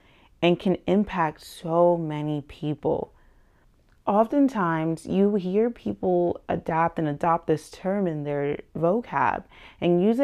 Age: 30-49